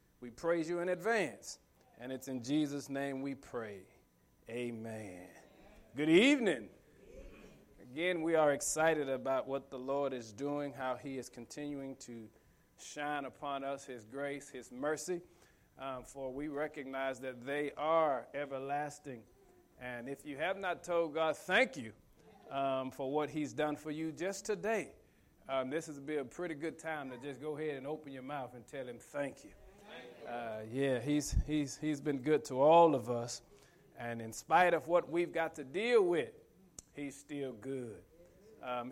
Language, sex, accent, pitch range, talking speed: English, male, American, 135-165 Hz, 170 wpm